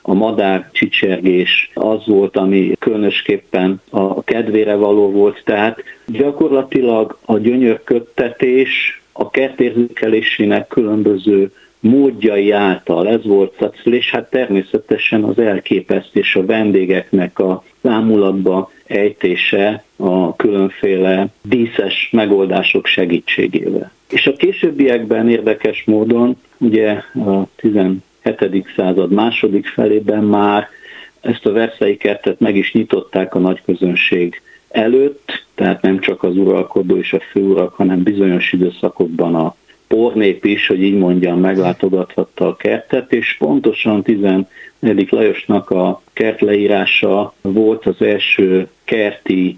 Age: 50-69